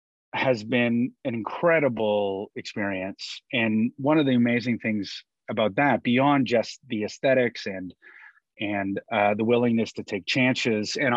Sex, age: male, 30-49